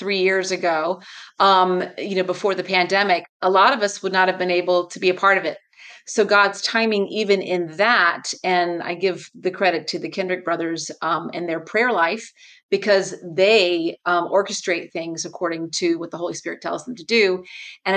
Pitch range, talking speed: 175-205 Hz, 200 wpm